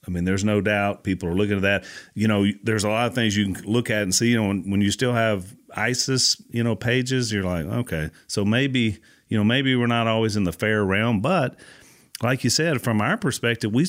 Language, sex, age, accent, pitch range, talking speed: English, male, 40-59, American, 90-115 Hz, 245 wpm